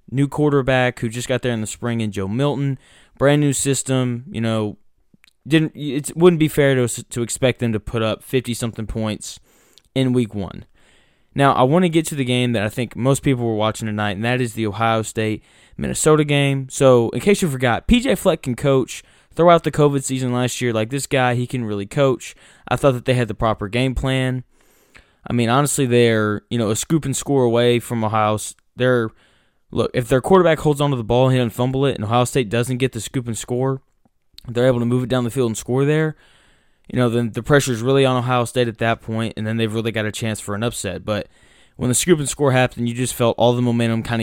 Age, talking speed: 20-39, 235 wpm